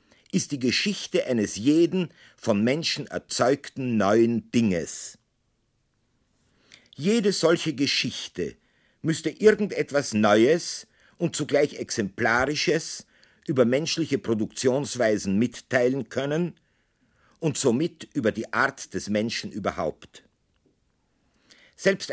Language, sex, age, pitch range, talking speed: German, male, 50-69, 110-150 Hz, 90 wpm